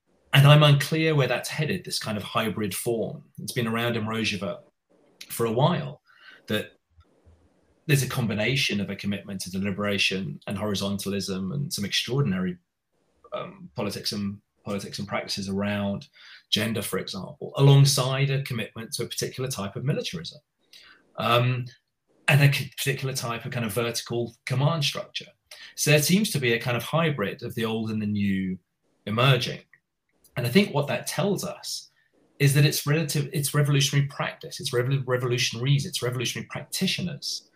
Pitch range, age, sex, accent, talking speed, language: 110-150 Hz, 30-49, male, British, 155 wpm, English